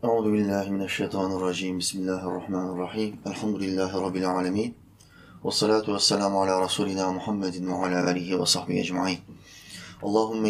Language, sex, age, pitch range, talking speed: Turkish, male, 20-39, 95-110 Hz, 95 wpm